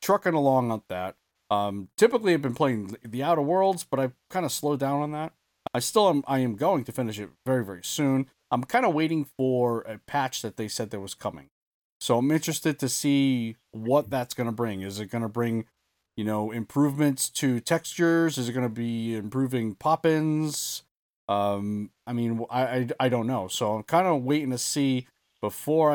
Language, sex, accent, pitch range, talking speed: English, male, American, 105-140 Hz, 205 wpm